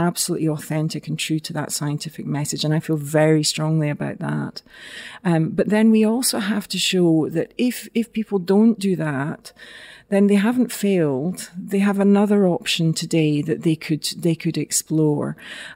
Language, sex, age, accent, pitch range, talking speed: English, female, 40-59, British, 155-195 Hz, 170 wpm